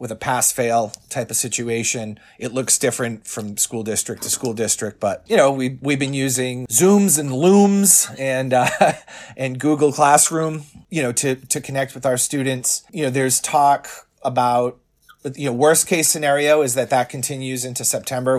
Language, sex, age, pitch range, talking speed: English, male, 30-49, 110-135 Hz, 175 wpm